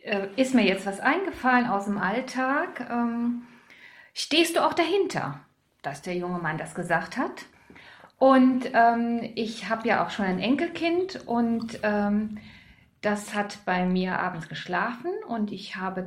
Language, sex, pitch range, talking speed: German, female, 210-275 Hz, 150 wpm